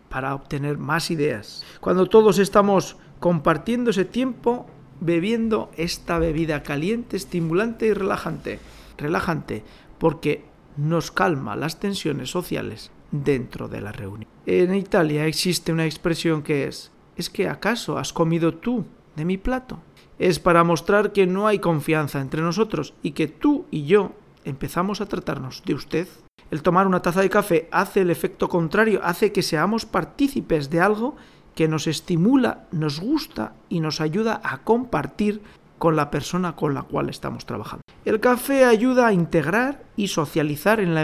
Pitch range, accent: 160-210 Hz, Spanish